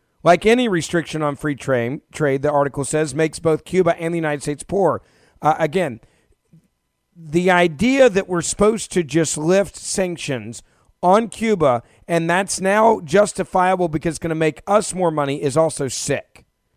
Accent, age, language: American, 40-59, English